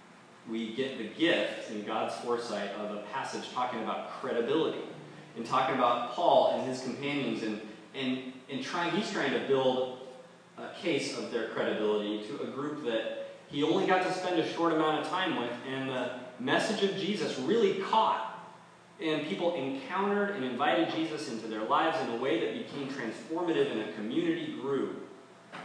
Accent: American